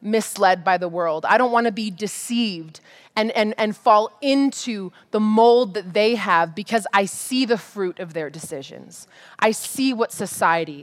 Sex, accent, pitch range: female, American, 210-295 Hz